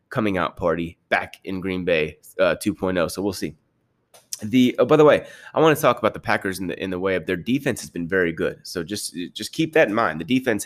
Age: 30-49